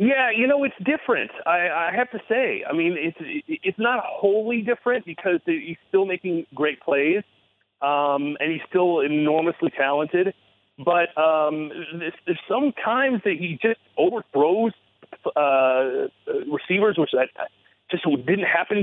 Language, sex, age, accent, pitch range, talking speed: English, male, 40-59, American, 140-220 Hz, 145 wpm